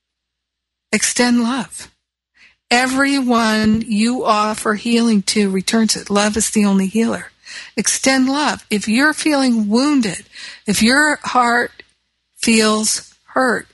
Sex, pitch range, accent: female, 200-235 Hz, American